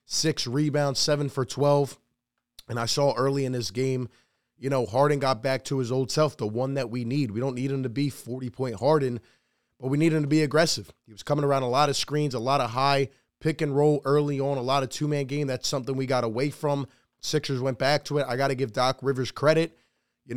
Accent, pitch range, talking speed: American, 130-155 Hz, 240 wpm